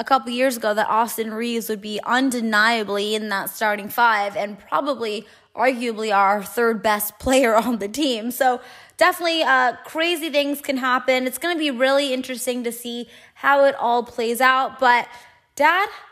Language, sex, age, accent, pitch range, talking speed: English, female, 20-39, American, 230-290 Hz, 170 wpm